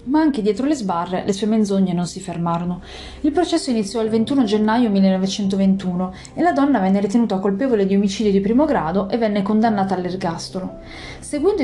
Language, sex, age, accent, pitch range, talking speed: Italian, female, 30-49, native, 195-245 Hz, 175 wpm